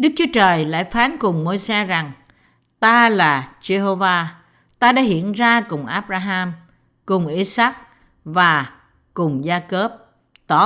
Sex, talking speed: female, 135 wpm